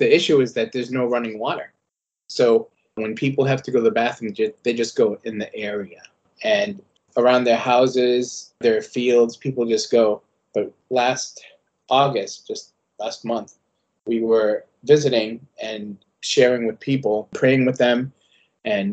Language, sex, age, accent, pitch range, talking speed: English, male, 30-49, American, 115-155 Hz, 155 wpm